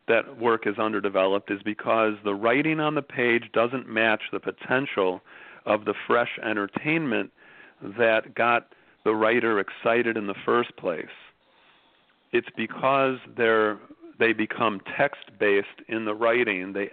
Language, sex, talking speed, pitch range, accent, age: English, male, 130 wpm, 100-115 Hz, American, 40-59